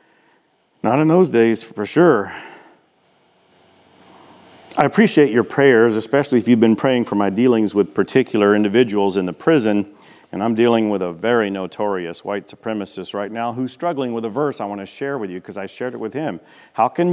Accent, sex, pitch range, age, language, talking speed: American, male, 100-140 Hz, 50-69, English, 190 wpm